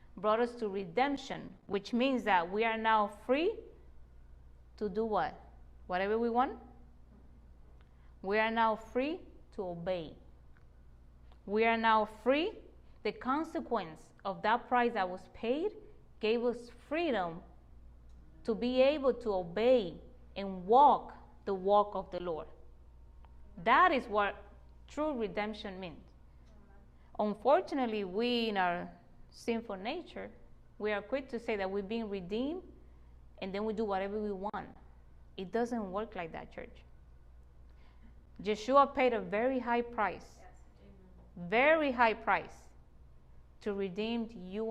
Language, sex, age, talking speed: English, female, 20-39, 130 wpm